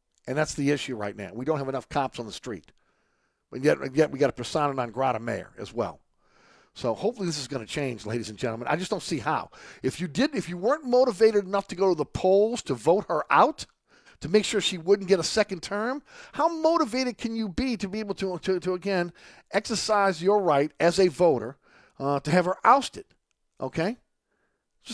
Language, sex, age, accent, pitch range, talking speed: English, male, 50-69, American, 165-225 Hz, 220 wpm